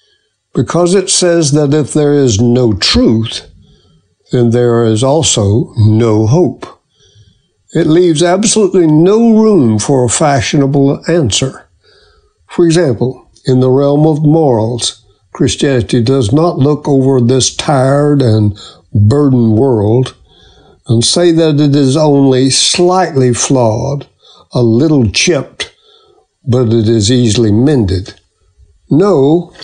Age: 60-79